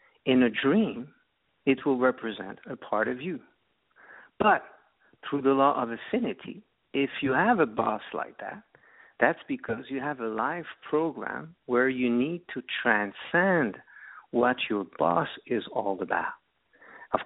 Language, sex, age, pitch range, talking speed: English, male, 50-69, 120-165 Hz, 145 wpm